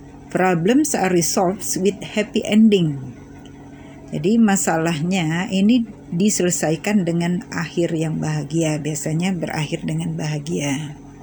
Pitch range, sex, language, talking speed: 155-205 Hz, female, Indonesian, 95 wpm